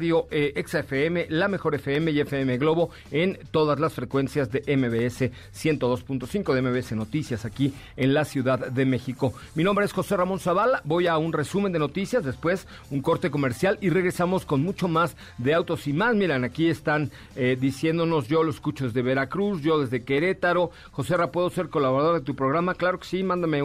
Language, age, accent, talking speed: Spanish, 40-59, Mexican, 190 wpm